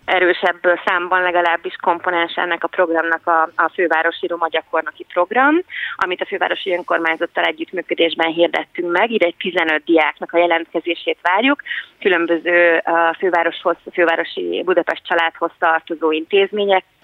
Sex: female